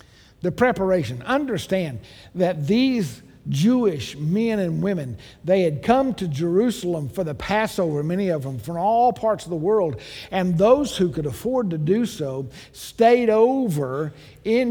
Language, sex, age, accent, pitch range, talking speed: English, male, 50-69, American, 155-215 Hz, 150 wpm